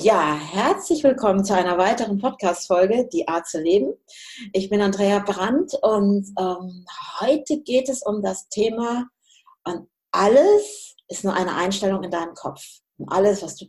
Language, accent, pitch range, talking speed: German, German, 180-250 Hz, 155 wpm